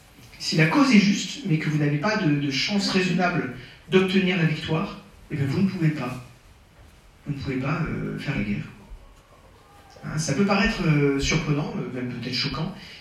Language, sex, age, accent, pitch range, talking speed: French, male, 40-59, French, 120-160 Hz, 185 wpm